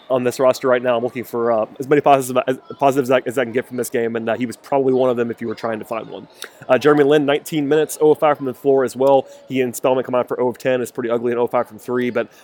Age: 20-39